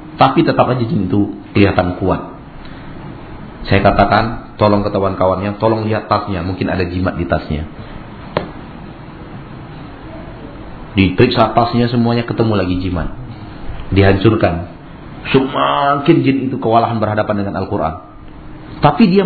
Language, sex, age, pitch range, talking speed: Malay, male, 40-59, 95-130 Hz, 110 wpm